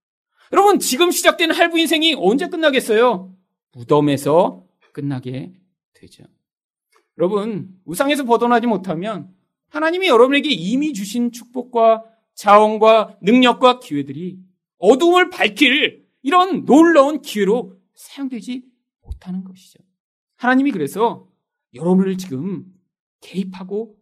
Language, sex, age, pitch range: Korean, male, 40-59, 180-280 Hz